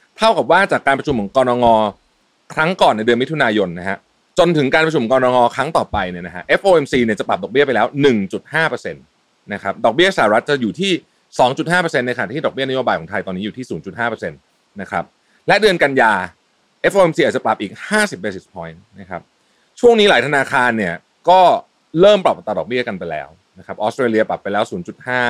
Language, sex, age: Thai, male, 30-49